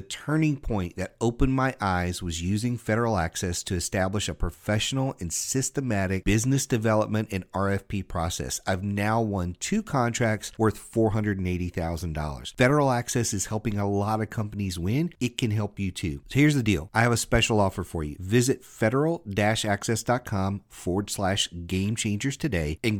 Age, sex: 40-59, male